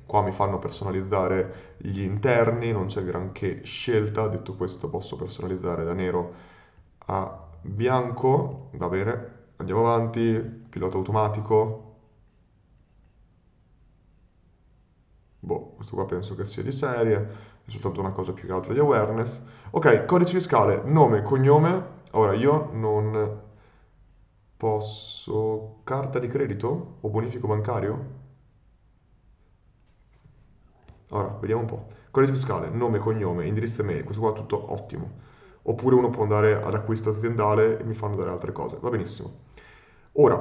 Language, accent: Italian, native